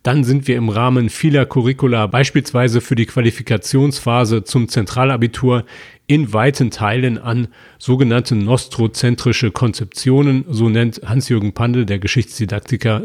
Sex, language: male, German